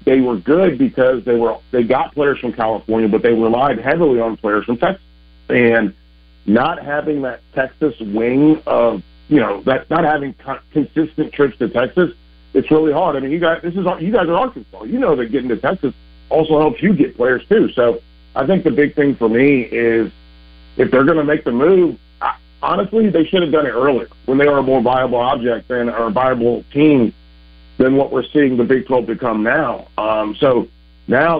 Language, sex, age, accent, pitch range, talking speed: English, male, 40-59, American, 110-145 Hz, 210 wpm